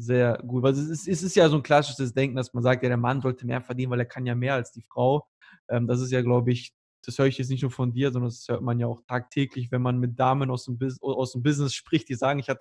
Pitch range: 125-160 Hz